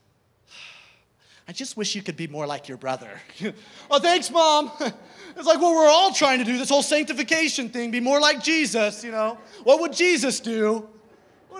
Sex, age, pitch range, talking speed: male, 30-49, 205-285 Hz, 185 wpm